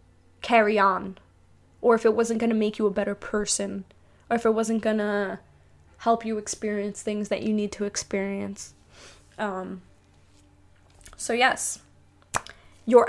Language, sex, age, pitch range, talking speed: English, female, 10-29, 190-235 Hz, 140 wpm